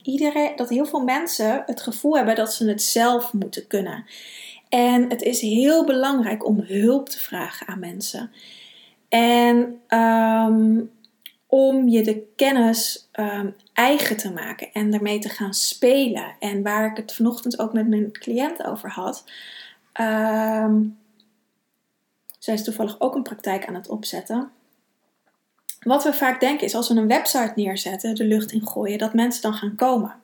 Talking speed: 150 wpm